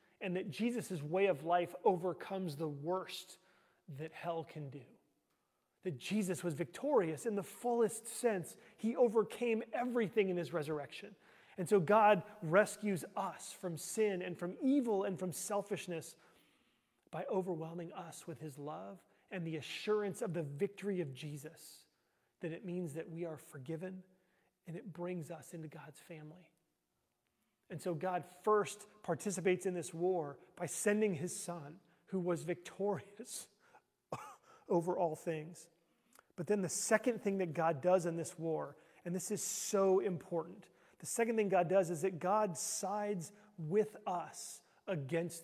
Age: 30-49